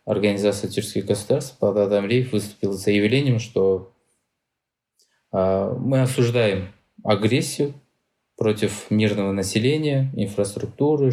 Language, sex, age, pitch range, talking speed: Russian, male, 20-39, 100-115 Hz, 85 wpm